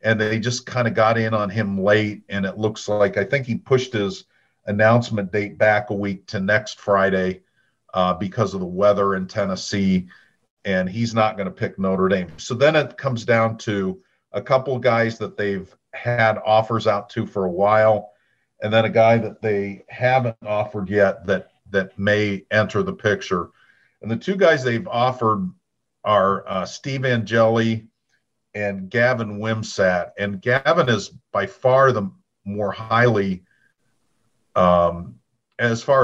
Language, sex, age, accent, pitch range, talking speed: English, male, 50-69, American, 100-115 Hz, 165 wpm